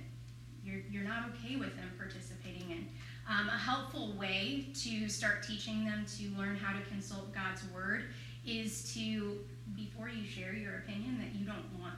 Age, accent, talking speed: 20-39, American, 170 wpm